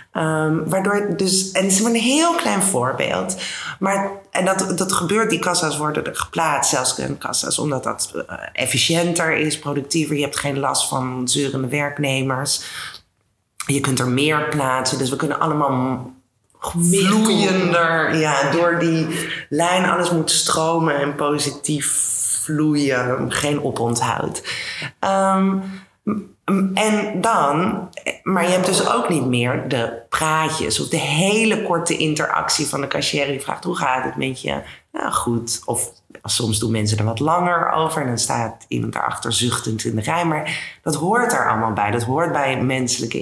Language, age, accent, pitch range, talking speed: Dutch, 20-39, Dutch, 130-185 Hz, 160 wpm